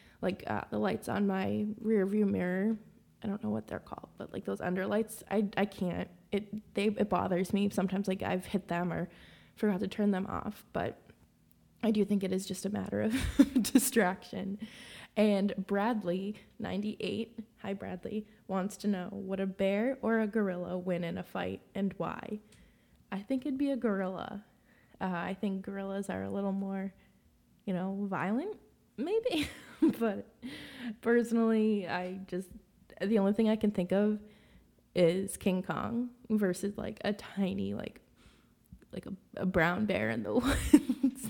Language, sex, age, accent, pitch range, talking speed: English, female, 20-39, American, 190-225 Hz, 165 wpm